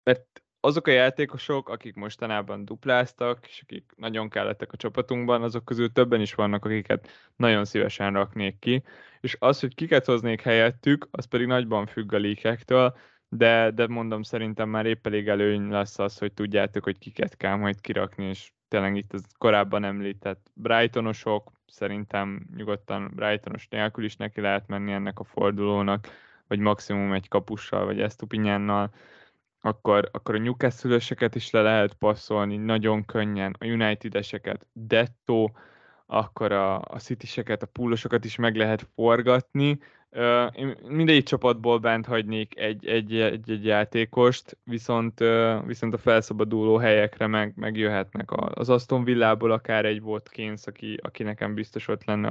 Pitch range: 105-120 Hz